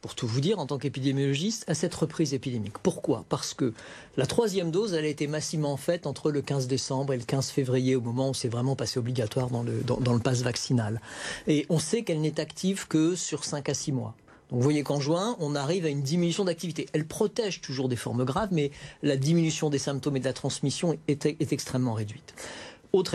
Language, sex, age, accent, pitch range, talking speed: French, male, 40-59, French, 135-175 Hz, 230 wpm